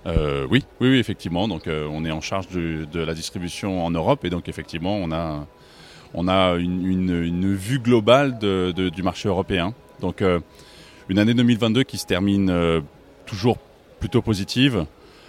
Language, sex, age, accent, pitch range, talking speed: French, male, 30-49, French, 90-115 Hz, 180 wpm